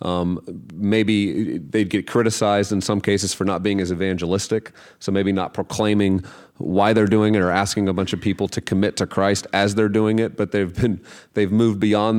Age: 30-49